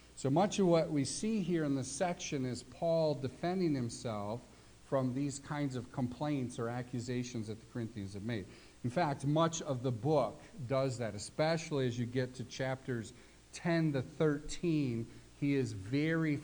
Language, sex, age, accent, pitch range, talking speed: English, male, 50-69, American, 120-145 Hz, 170 wpm